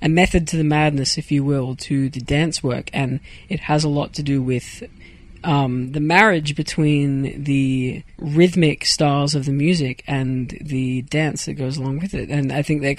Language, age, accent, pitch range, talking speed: English, 20-39, Australian, 140-170 Hz, 195 wpm